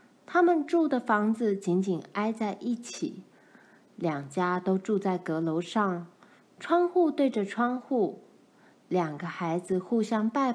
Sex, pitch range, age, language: female, 185-250 Hz, 20-39, Chinese